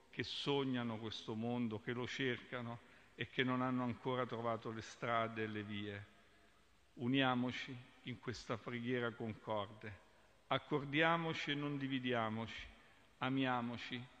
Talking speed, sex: 120 wpm, male